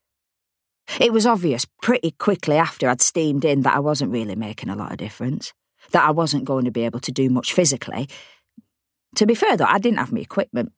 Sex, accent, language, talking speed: female, British, English, 210 wpm